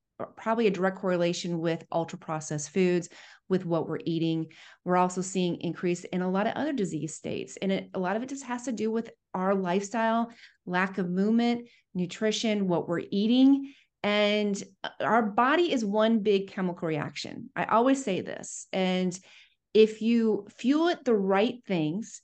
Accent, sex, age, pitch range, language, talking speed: American, female, 30-49, 180-220 Hz, English, 165 wpm